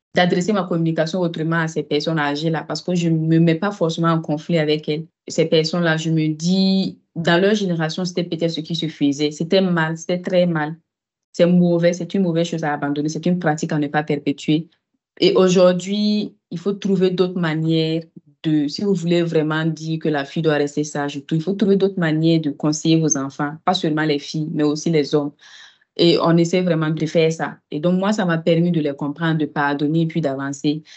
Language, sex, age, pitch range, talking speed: French, female, 30-49, 150-175 Hz, 215 wpm